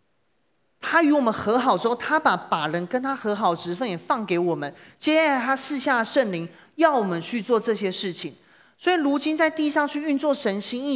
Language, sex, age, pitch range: Chinese, male, 30-49, 175-250 Hz